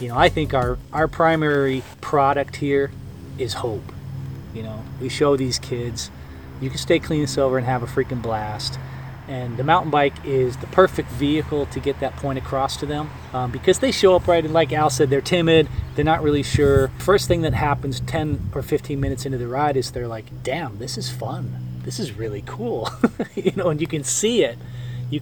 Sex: male